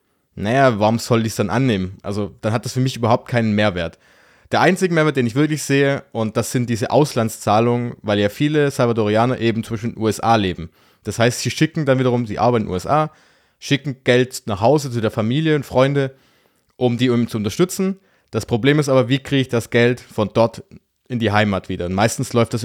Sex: male